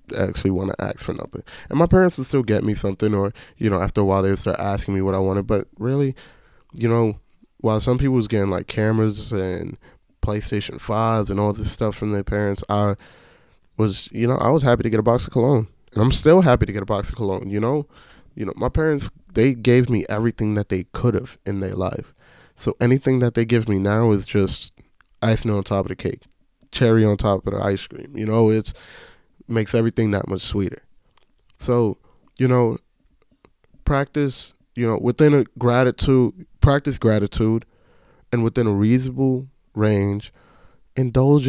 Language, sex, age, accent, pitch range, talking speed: English, male, 20-39, American, 100-125 Hz, 195 wpm